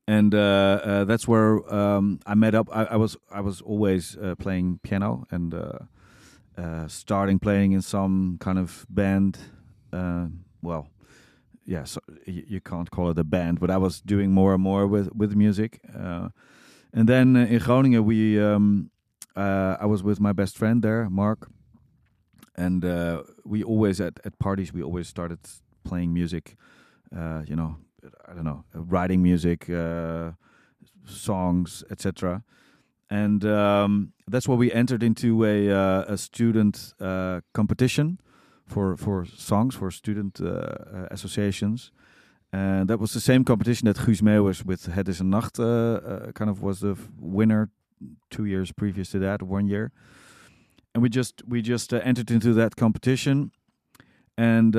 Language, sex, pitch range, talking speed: Dutch, male, 95-110 Hz, 165 wpm